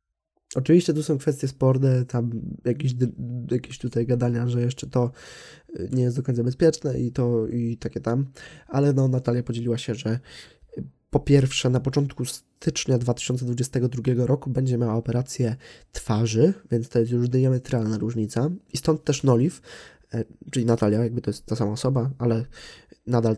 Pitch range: 120-140 Hz